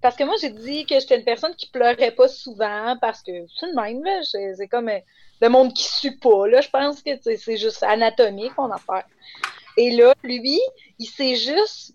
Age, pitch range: 30-49, 240-310 Hz